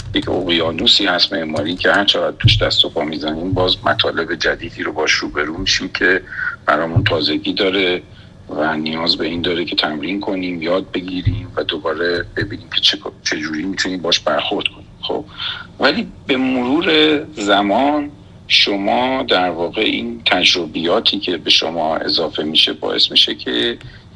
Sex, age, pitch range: male, 50-69, 95-125 Hz